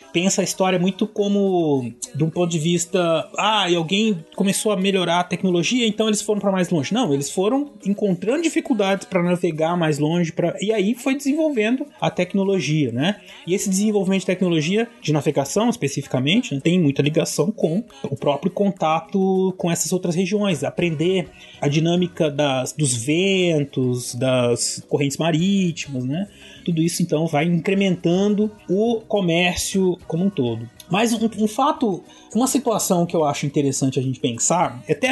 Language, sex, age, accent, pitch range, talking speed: Portuguese, male, 20-39, Brazilian, 155-210 Hz, 160 wpm